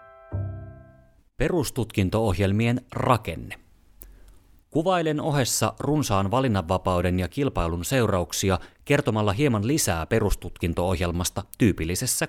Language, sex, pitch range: Finnish, male, 90-120 Hz